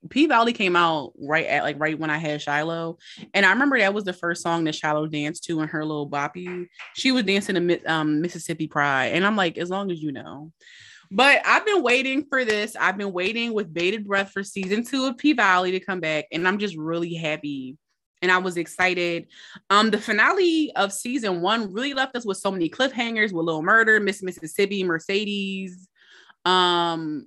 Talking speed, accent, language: 200 wpm, American, English